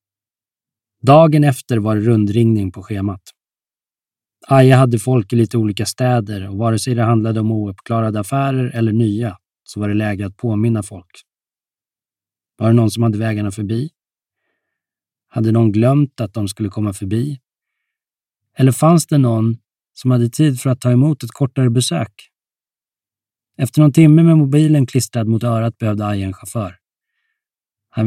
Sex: male